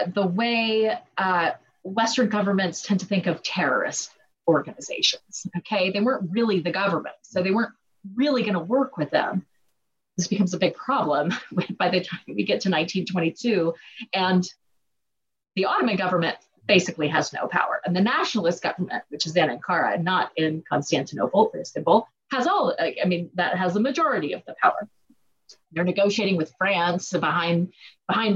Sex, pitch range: female, 175-220 Hz